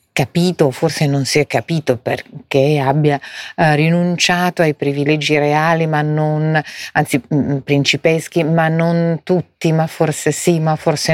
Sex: female